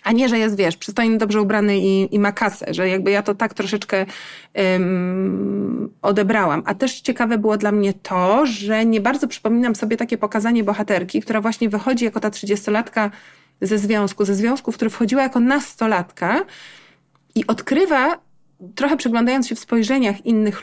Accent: native